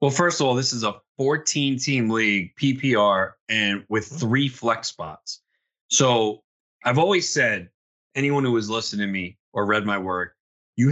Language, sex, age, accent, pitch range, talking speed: English, male, 30-49, American, 110-140 Hz, 165 wpm